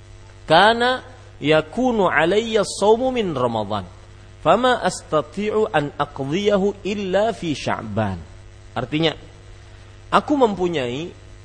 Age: 40-59